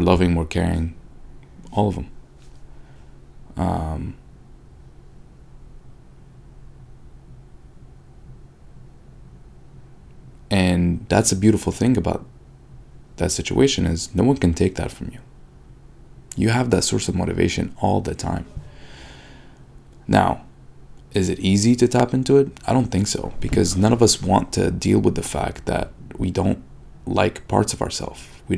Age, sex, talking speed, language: 30-49, male, 130 wpm, English